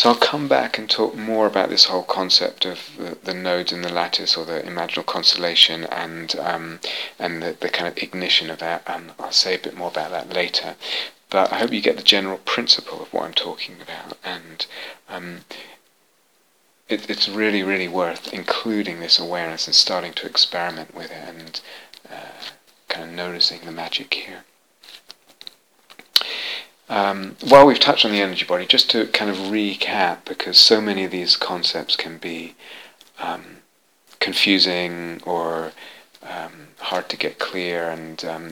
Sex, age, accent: male, 30-49, British